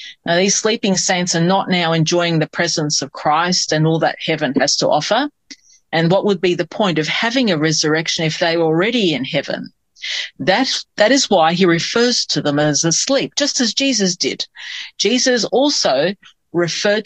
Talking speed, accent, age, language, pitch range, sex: 185 wpm, Australian, 40-59, English, 165-220 Hz, female